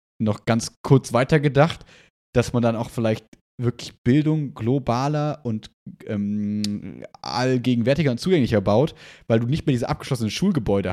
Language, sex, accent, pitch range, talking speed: German, male, German, 115-145 Hz, 135 wpm